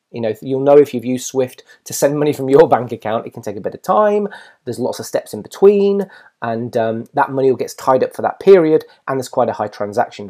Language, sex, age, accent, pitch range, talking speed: English, male, 30-49, British, 115-160 Hz, 260 wpm